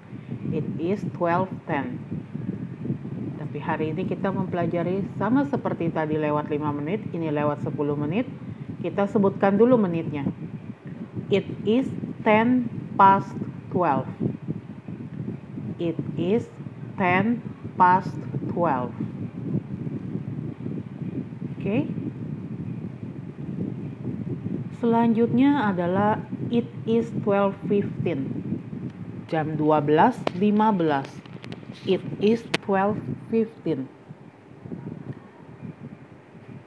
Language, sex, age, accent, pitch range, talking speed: Indonesian, female, 40-59, native, 155-200 Hz, 75 wpm